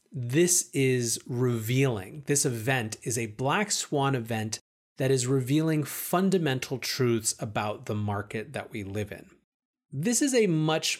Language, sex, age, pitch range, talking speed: English, male, 30-49, 115-145 Hz, 140 wpm